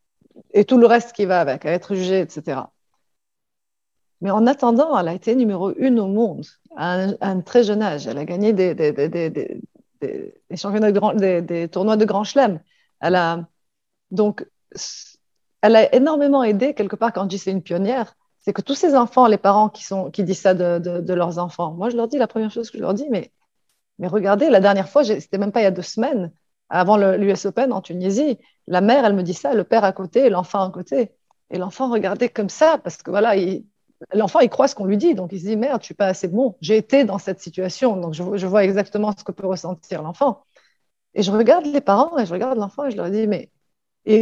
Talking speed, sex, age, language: 240 wpm, female, 30-49, French